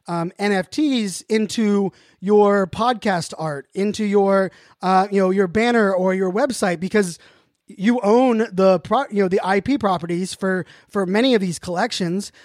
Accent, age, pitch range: American, 30-49, 180-225 Hz